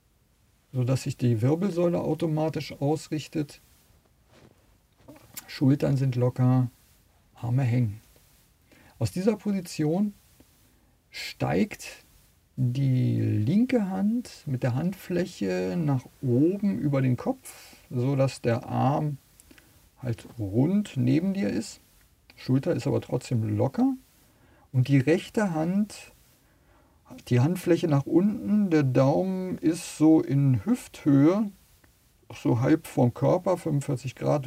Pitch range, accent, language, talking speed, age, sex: 125-170 Hz, German, German, 105 wpm, 50-69, male